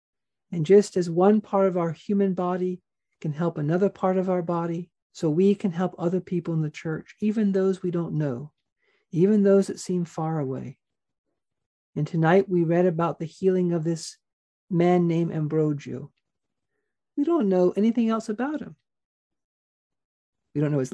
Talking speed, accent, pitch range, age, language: 170 wpm, American, 155-195 Hz, 50-69, English